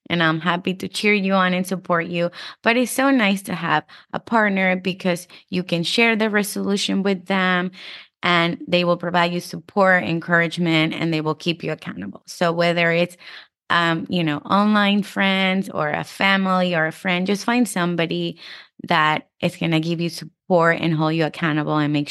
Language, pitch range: English, 165-195 Hz